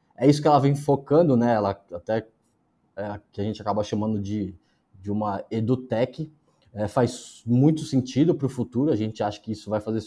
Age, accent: 20-39, Brazilian